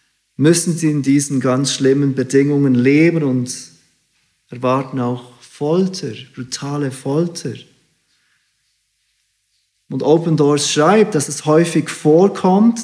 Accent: German